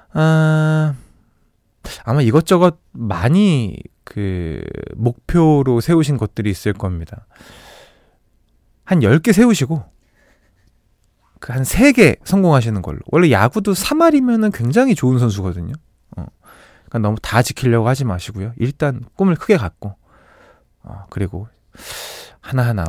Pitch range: 105-165 Hz